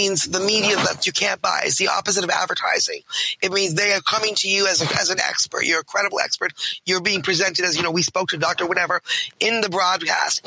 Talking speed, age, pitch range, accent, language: 240 wpm, 30-49, 180-205 Hz, American, English